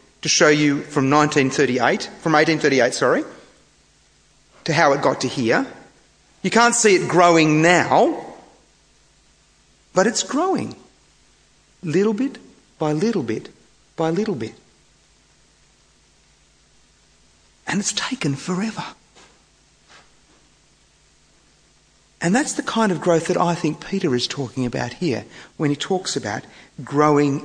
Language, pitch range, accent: English, 140-195 Hz, Australian